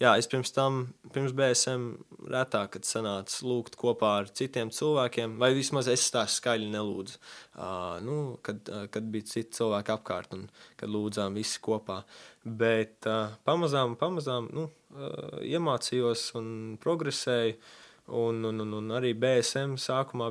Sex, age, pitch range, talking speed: male, 20-39, 110-125 Hz, 145 wpm